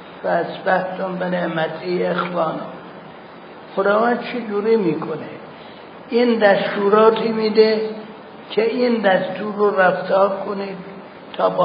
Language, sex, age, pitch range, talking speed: Persian, male, 60-79, 180-215 Hz, 110 wpm